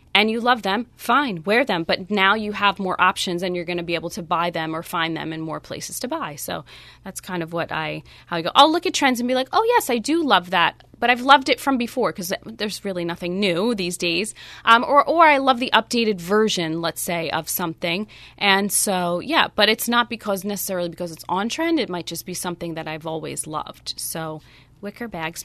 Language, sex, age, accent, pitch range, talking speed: English, female, 30-49, American, 175-235 Hz, 240 wpm